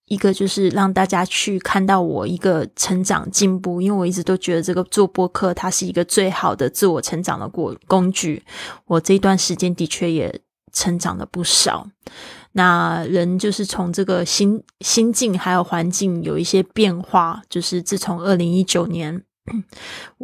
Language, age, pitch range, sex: Chinese, 20-39, 175-195 Hz, female